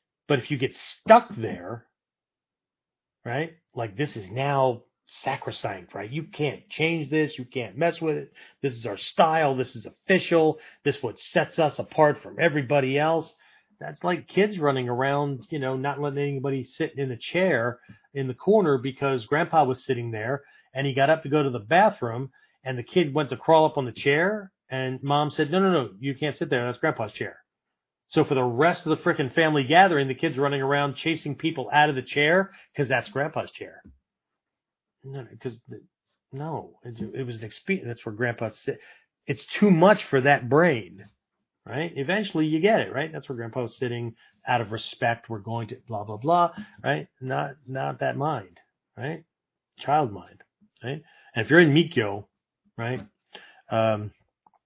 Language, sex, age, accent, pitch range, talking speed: English, male, 40-59, American, 125-160 Hz, 185 wpm